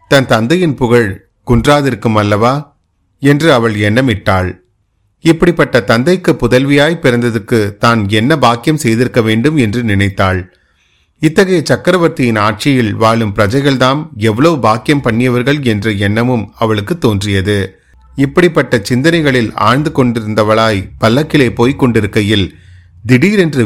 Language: Tamil